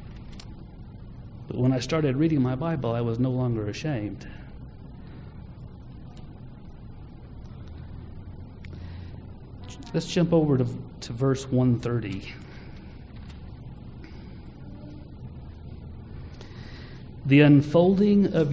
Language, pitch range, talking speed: English, 115-145 Hz, 70 wpm